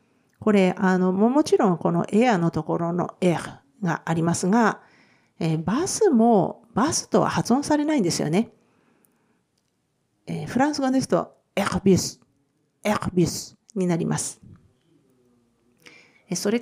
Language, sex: Japanese, female